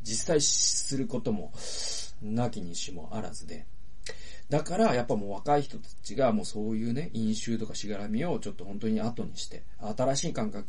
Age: 40-59